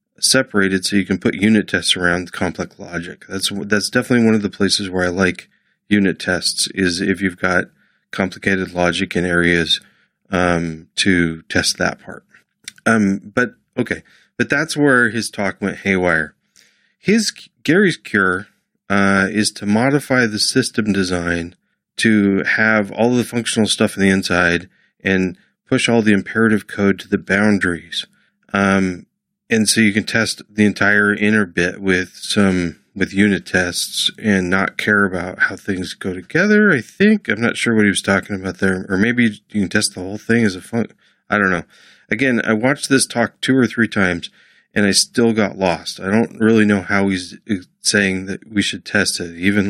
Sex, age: male, 30-49